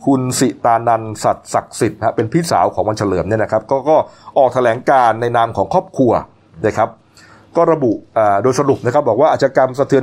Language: Thai